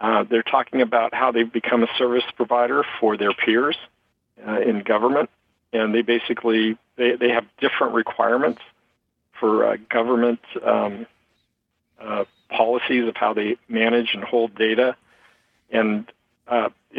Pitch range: 115-125 Hz